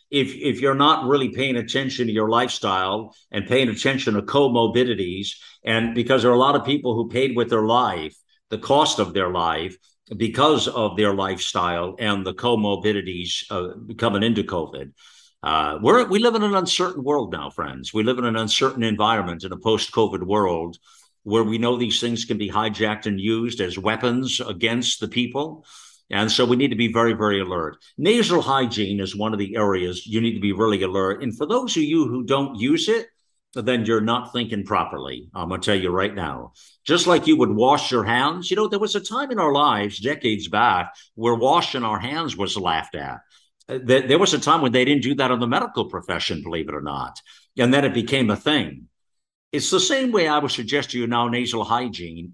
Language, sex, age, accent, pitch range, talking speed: English, male, 50-69, American, 105-135 Hz, 210 wpm